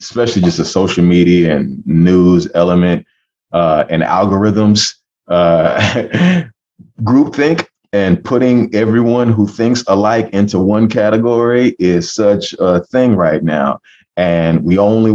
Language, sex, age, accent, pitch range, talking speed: English, male, 30-49, American, 90-110 Hz, 125 wpm